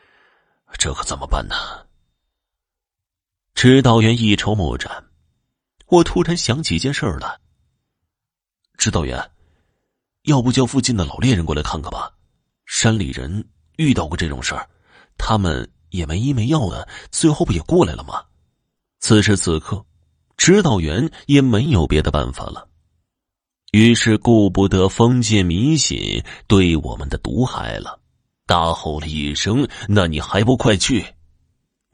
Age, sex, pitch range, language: 30-49, male, 85-125 Hz, Chinese